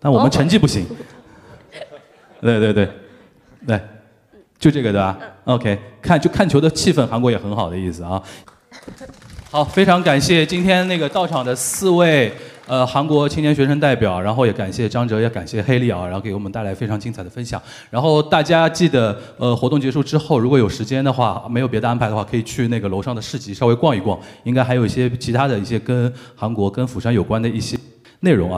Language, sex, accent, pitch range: Chinese, male, native, 110-145 Hz